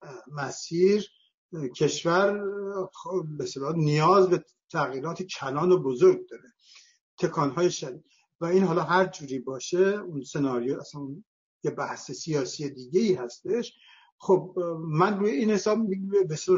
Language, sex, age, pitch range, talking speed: Persian, male, 60-79, 145-190 Hz, 115 wpm